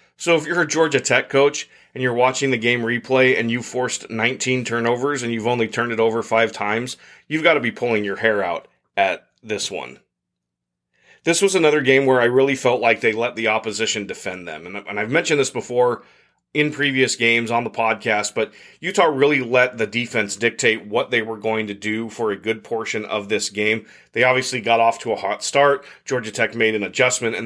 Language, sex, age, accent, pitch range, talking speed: English, male, 30-49, American, 110-135 Hz, 210 wpm